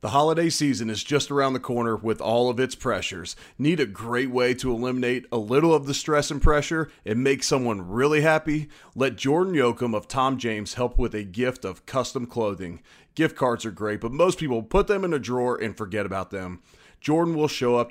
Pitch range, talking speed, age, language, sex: 115-145 Hz, 215 wpm, 30-49, English, male